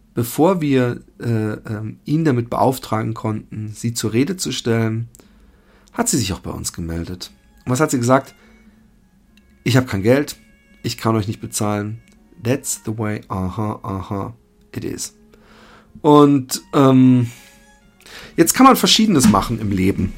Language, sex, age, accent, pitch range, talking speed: German, male, 40-59, German, 110-135 Hz, 150 wpm